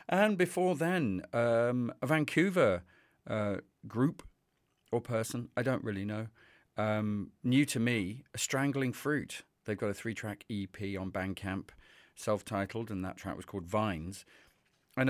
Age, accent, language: 40-59, British, English